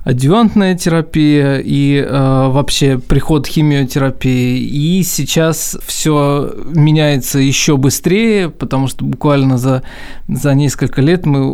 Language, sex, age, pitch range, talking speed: Russian, male, 20-39, 135-155 Hz, 110 wpm